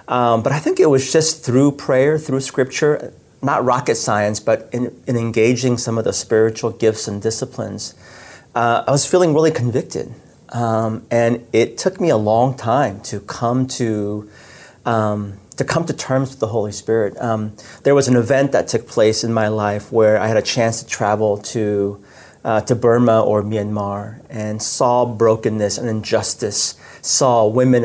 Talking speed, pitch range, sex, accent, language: 175 wpm, 110-130 Hz, male, American, English